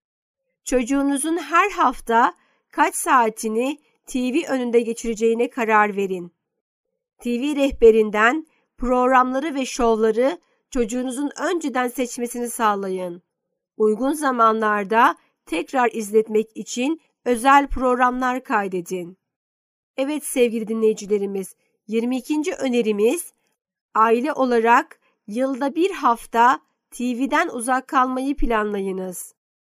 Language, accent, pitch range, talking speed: Turkish, native, 225-265 Hz, 85 wpm